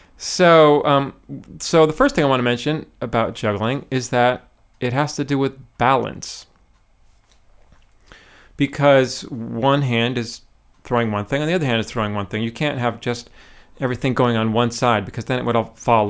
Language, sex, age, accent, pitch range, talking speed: English, male, 40-59, American, 115-145 Hz, 190 wpm